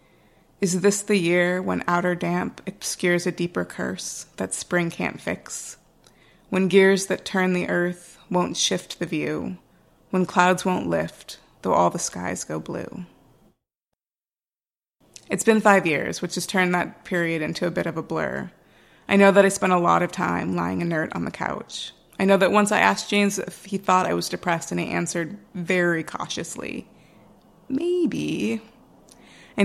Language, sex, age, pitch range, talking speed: English, female, 30-49, 165-195 Hz, 170 wpm